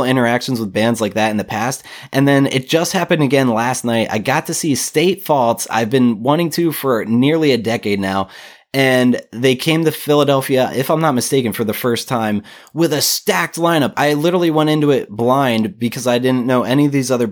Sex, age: male, 20-39